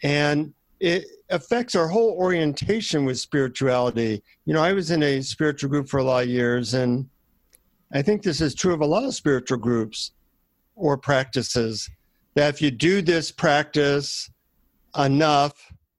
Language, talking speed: English, 160 wpm